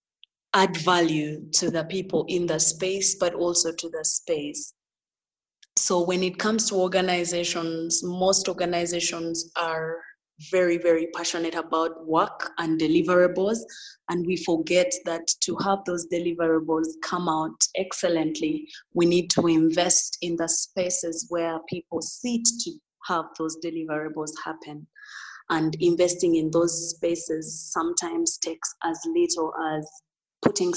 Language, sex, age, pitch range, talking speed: English, female, 20-39, 160-185 Hz, 130 wpm